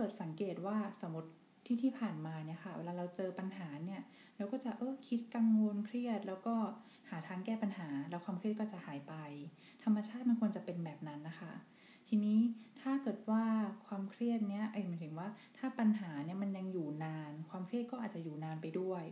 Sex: female